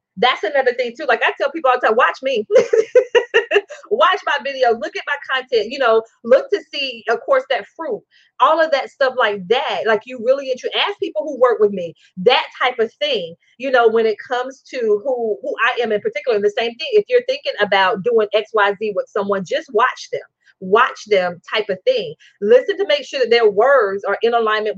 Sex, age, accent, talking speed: female, 30-49, American, 220 wpm